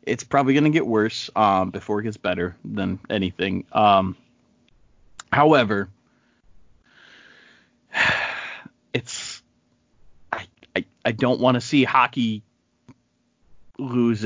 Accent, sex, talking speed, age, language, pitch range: American, male, 110 wpm, 30-49, English, 105-145 Hz